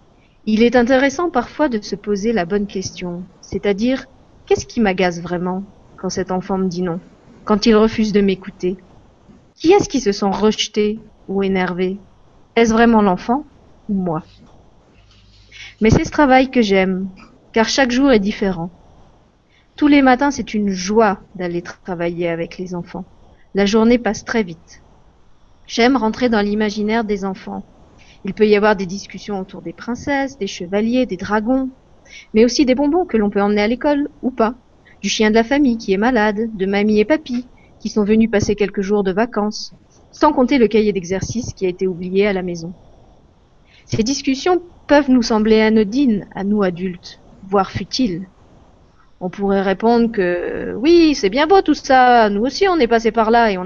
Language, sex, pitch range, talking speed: French, female, 190-245 Hz, 180 wpm